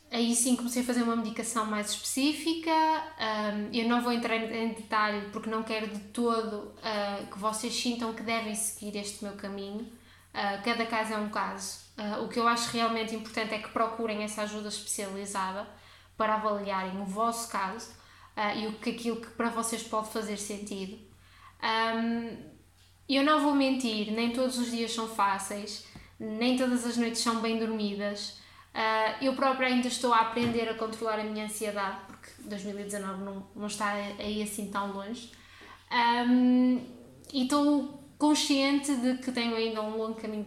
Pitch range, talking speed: 210-240 Hz, 155 wpm